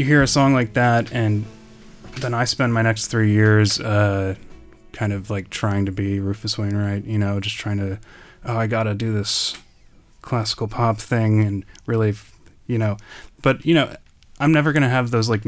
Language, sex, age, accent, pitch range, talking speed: English, male, 10-29, American, 105-120 Hz, 200 wpm